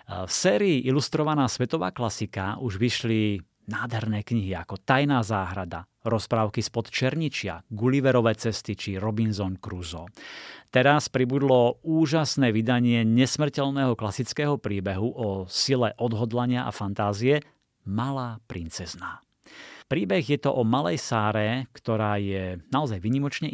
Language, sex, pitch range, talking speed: Slovak, male, 105-130 Hz, 110 wpm